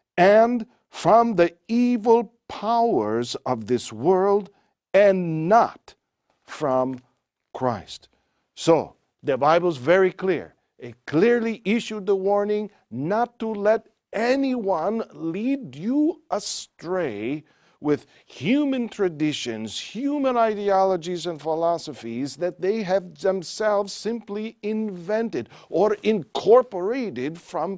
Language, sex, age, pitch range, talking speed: English, male, 50-69, 140-225 Hz, 100 wpm